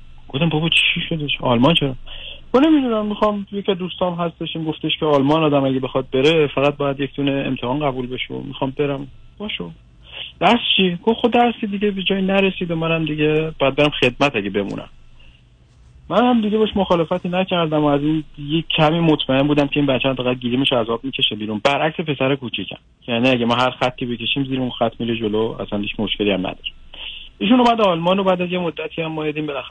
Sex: male